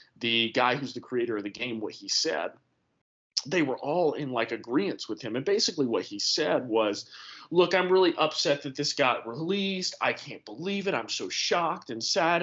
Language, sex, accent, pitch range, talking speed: English, male, American, 140-195 Hz, 205 wpm